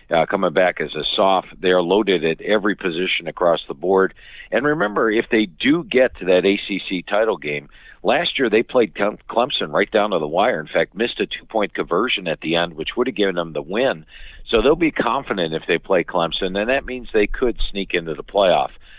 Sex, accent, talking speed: male, American, 220 wpm